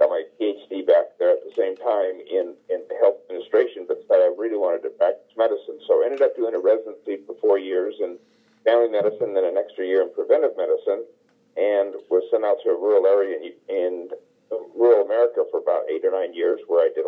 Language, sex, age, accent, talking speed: English, male, 50-69, American, 220 wpm